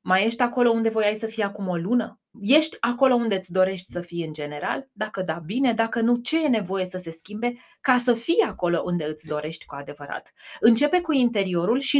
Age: 20-39